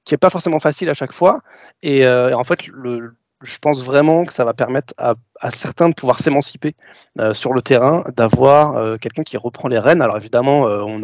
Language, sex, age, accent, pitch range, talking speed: French, male, 30-49, French, 115-145 Hz, 230 wpm